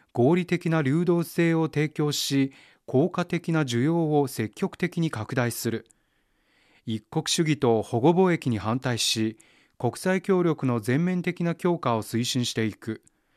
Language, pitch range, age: Japanese, 120-165 Hz, 30-49